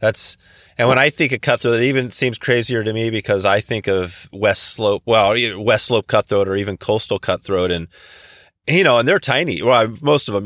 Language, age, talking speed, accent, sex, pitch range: English, 30-49, 220 wpm, American, male, 95-125 Hz